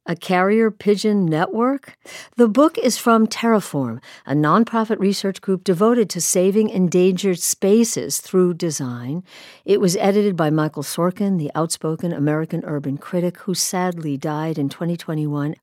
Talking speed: 140 wpm